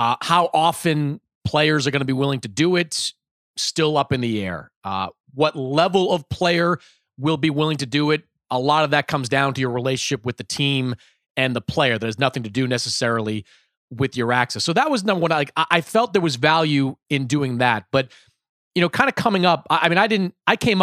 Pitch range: 125-165 Hz